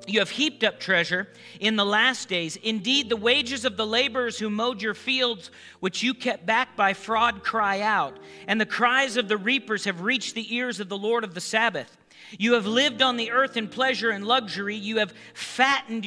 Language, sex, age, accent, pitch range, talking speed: English, male, 40-59, American, 195-240 Hz, 210 wpm